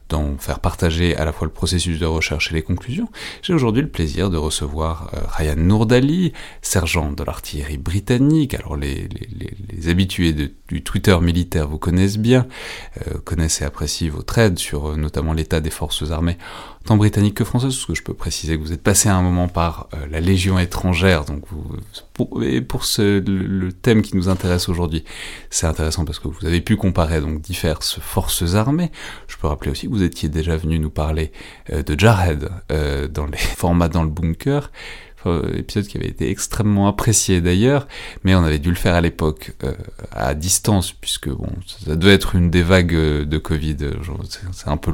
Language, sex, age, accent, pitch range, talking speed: French, male, 30-49, French, 80-95 Hz, 190 wpm